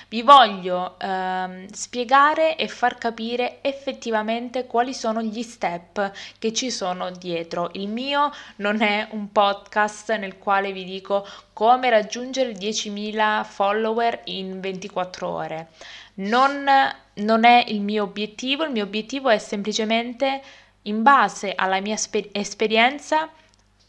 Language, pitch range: Italian, 185-230 Hz